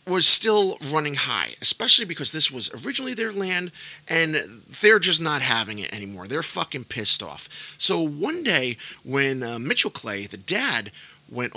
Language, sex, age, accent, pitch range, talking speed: English, male, 30-49, American, 120-160 Hz, 165 wpm